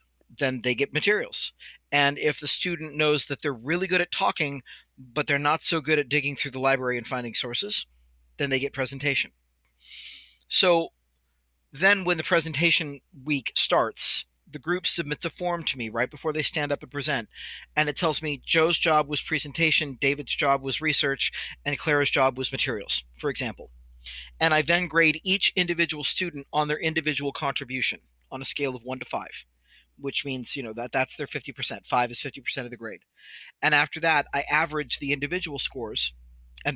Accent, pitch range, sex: American, 130-155 Hz, male